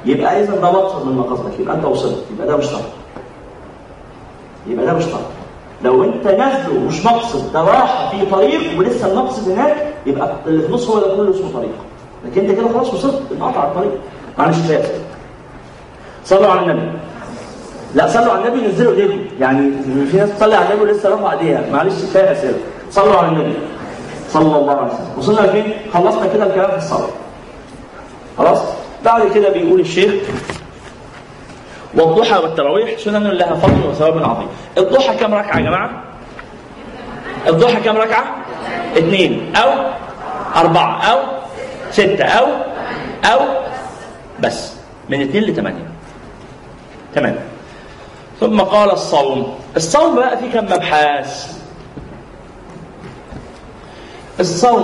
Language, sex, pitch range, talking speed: Arabic, male, 175-230 Hz, 125 wpm